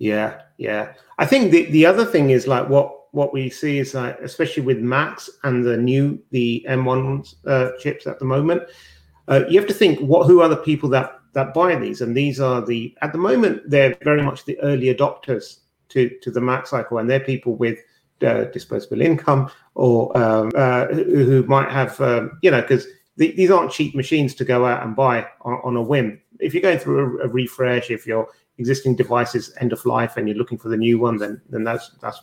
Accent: British